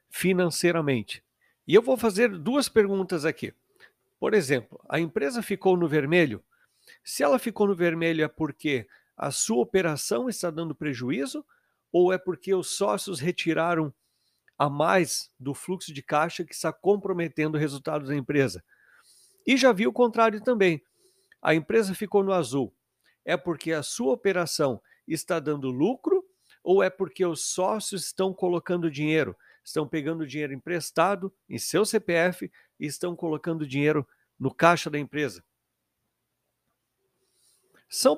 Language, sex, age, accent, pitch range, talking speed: Portuguese, male, 50-69, Brazilian, 150-195 Hz, 140 wpm